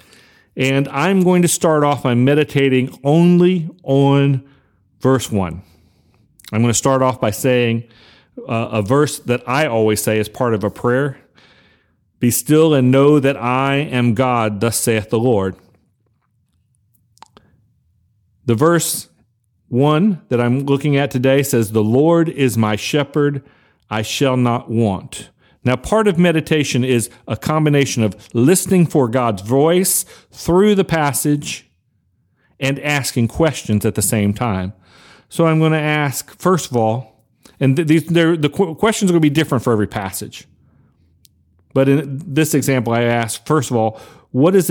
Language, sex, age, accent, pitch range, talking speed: English, male, 40-59, American, 110-150 Hz, 150 wpm